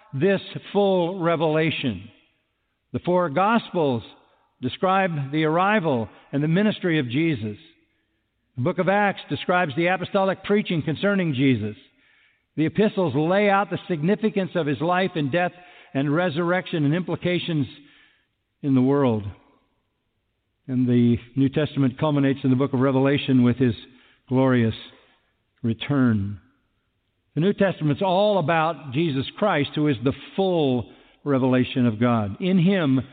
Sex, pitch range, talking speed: male, 125-180 Hz, 130 wpm